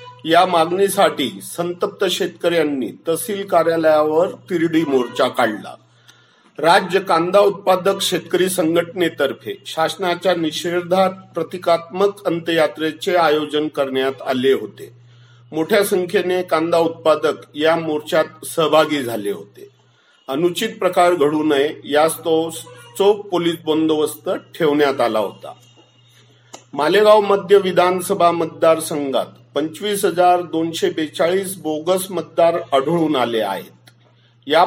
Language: Marathi